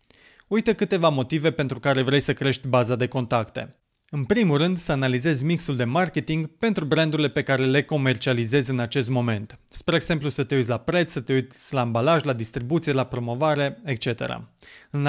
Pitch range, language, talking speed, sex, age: 130-170 Hz, Romanian, 185 wpm, male, 30-49